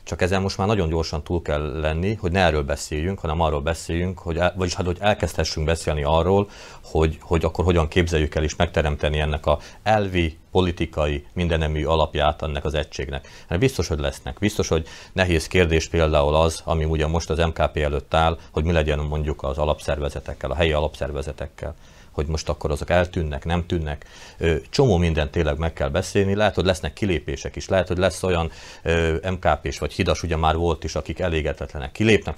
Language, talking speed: Hungarian, 175 wpm